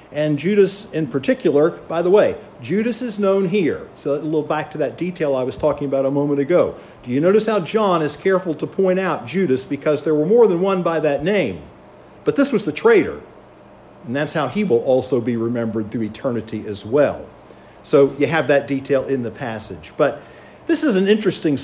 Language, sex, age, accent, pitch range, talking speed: English, male, 50-69, American, 140-185 Hz, 210 wpm